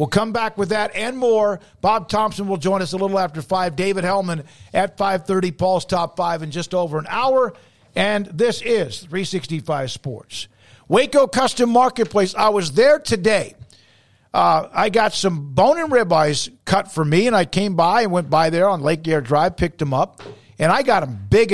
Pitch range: 170-215 Hz